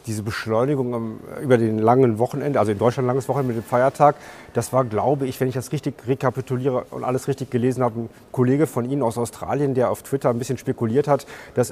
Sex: male